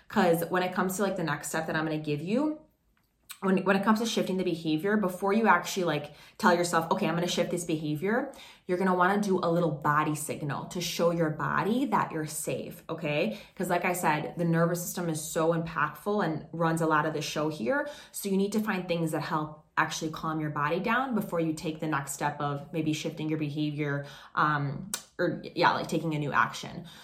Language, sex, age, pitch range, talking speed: English, female, 20-39, 155-185 Hz, 230 wpm